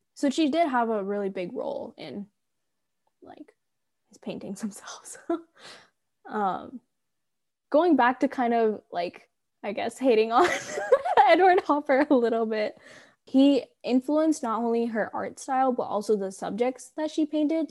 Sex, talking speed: female, 145 wpm